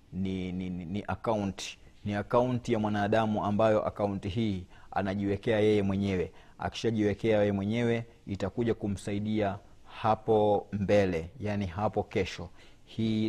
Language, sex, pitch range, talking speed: Swahili, male, 95-105 Hz, 115 wpm